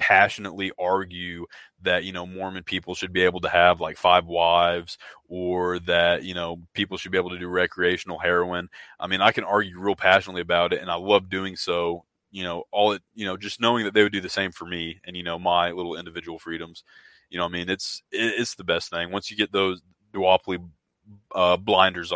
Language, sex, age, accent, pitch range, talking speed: English, male, 20-39, American, 90-95 Hz, 215 wpm